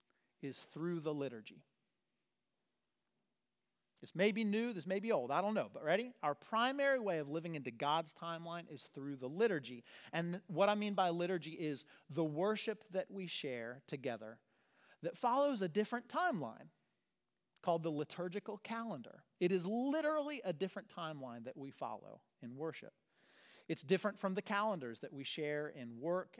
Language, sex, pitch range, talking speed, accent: English, male, 135-195 Hz, 165 wpm, American